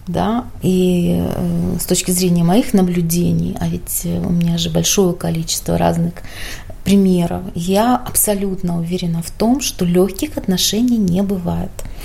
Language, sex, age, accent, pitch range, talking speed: Russian, female, 30-49, native, 175-215 Hz, 135 wpm